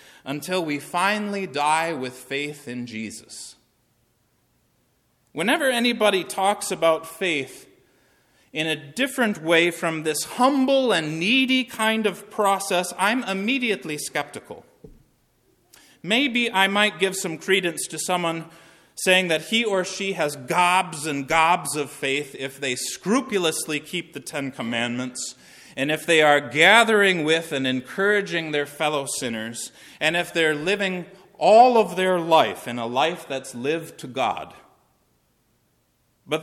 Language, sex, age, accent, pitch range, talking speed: English, male, 30-49, American, 145-195 Hz, 135 wpm